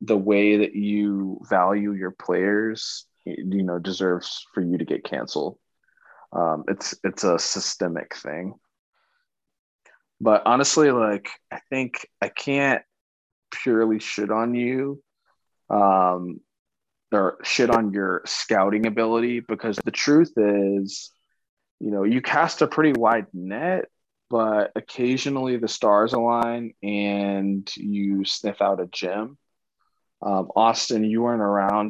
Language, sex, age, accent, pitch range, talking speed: English, male, 20-39, American, 95-115 Hz, 125 wpm